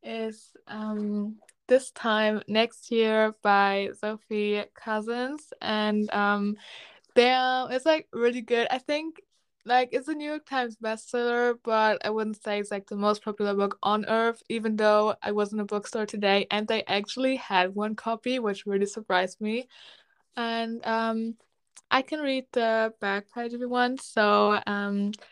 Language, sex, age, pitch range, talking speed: English, female, 10-29, 210-240 Hz, 165 wpm